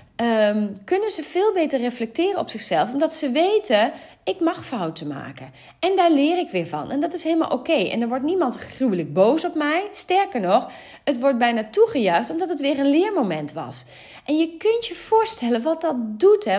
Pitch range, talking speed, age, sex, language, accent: 190-310 Hz, 205 wpm, 30-49, female, Dutch, Dutch